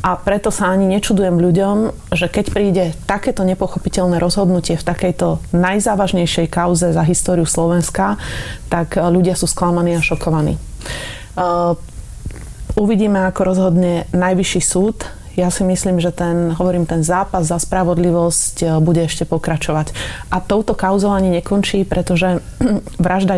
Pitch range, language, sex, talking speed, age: 170-185 Hz, Slovak, female, 130 wpm, 30-49